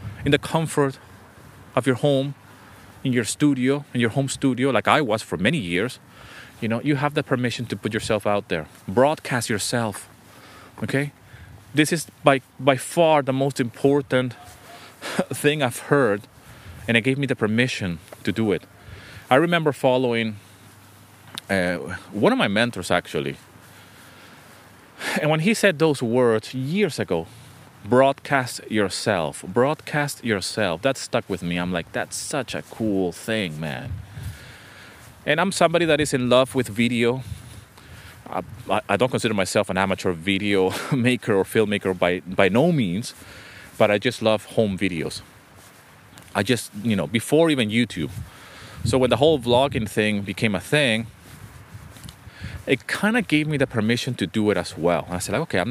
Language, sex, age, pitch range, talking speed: English, male, 30-49, 100-135 Hz, 160 wpm